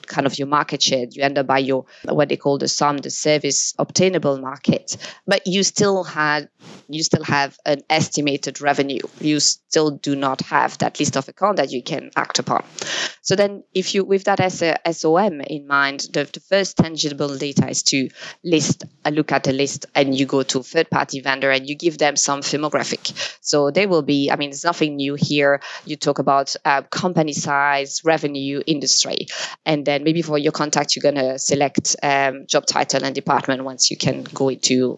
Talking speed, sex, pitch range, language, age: 200 wpm, female, 140-160 Hz, English, 20-39